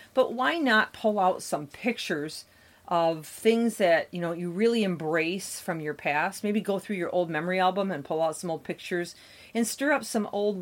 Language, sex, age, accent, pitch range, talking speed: English, female, 40-59, American, 170-215 Hz, 205 wpm